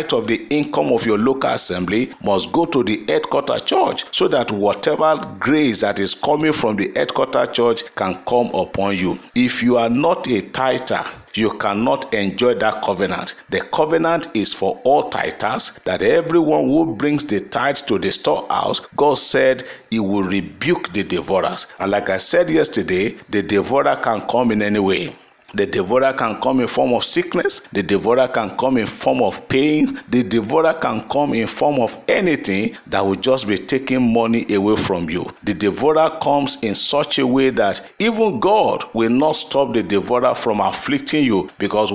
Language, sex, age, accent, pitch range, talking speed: English, male, 50-69, Nigerian, 105-150 Hz, 180 wpm